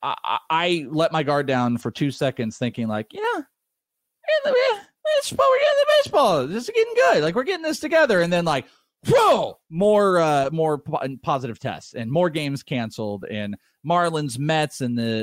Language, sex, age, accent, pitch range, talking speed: English, male, 30-49, American, 110-155 Hz, 185 wpm